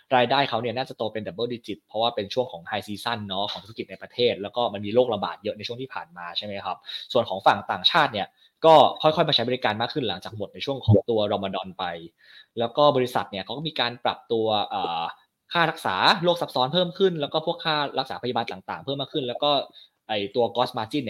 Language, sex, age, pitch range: Thai, male, 20-39, 105-140 Hz